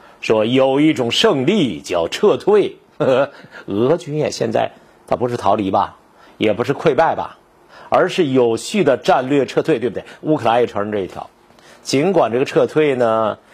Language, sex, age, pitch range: Chinese, male, 50-69, 115-155 Hz